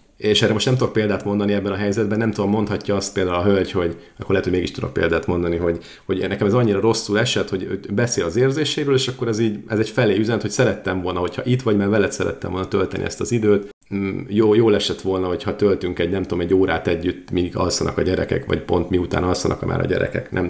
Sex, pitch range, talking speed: male, 95-115 Hz, 245 wpm